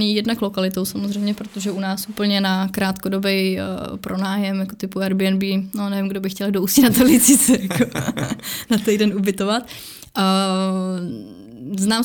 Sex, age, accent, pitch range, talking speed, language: female, 20-39, native, 190-200 Hz, 135 wpm, Czech